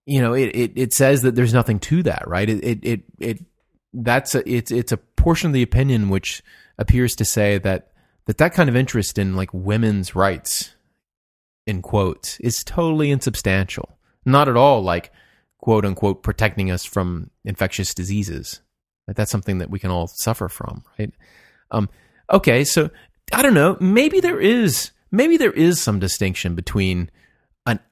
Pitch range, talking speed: 95-125 Hz, 175 wpm